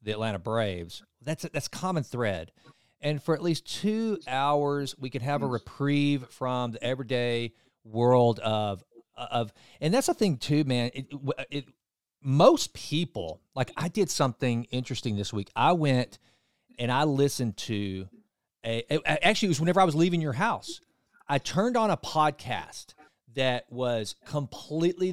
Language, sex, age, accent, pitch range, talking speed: English, male, 40-59, American, 120-160 Hz, 160 wpm